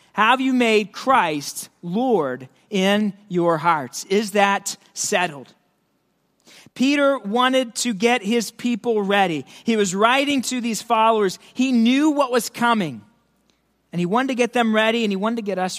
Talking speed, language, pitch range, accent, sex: 160 wpm, English, 200-255 Hz, American, male